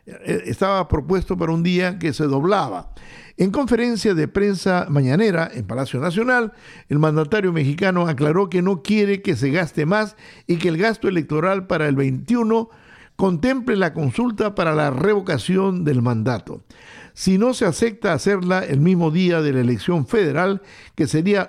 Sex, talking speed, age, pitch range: male, 160 wpm, 50-69, 155-205 Hz